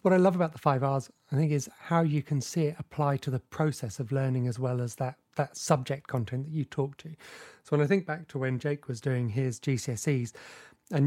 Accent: British